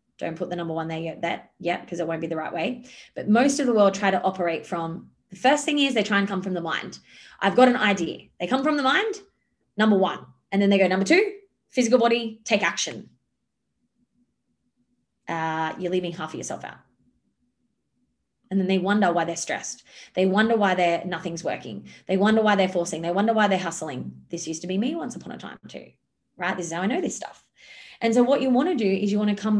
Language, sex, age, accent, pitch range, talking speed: English, female, 20-39, Australian, 175-230 Hz, 235 wpm